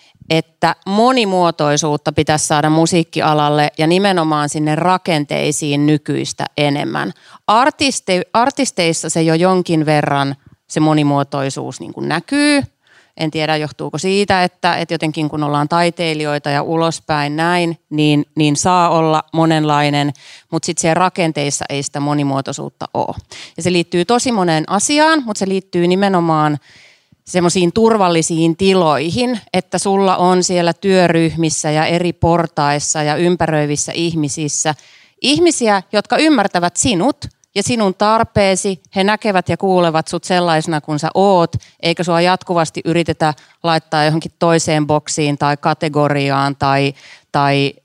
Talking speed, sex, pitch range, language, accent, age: 125 wpm, female, 145-180 Hz, Finnish, native, 30-49